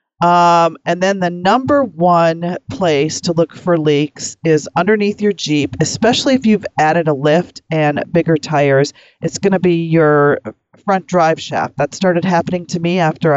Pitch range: 150-180 Hz